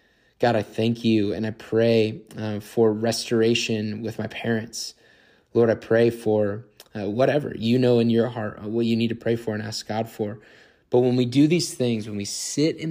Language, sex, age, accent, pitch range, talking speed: English, male, 20-39, American, 110-125 Hz, 210 wpm